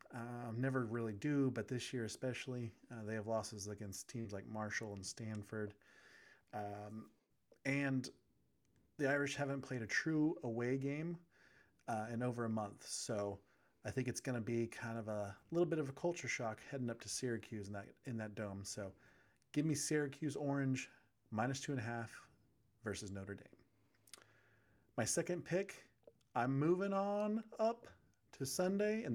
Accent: American